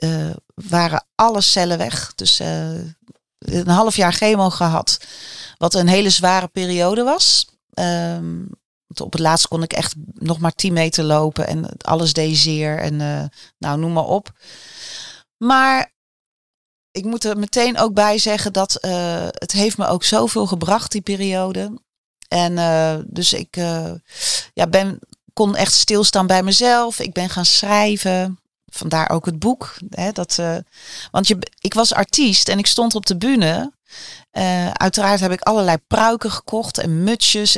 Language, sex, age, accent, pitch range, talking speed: Dutch, female, 30-49, Dutch, 165-205 Hz, 155 wpm